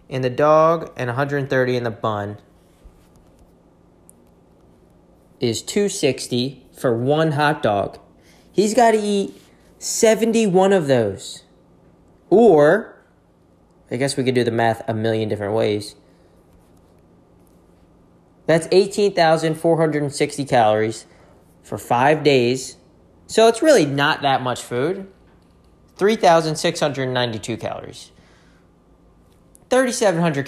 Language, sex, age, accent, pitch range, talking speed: English, male, 20-39, American, 115-160 Hz, 95 wpm